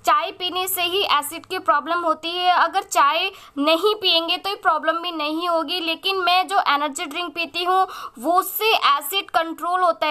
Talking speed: 180 wpm